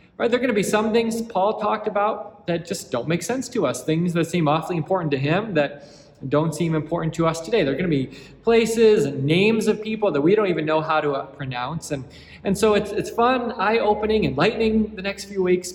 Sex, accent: male, American